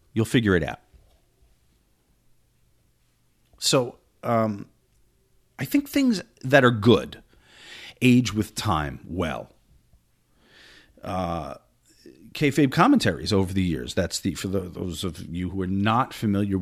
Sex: male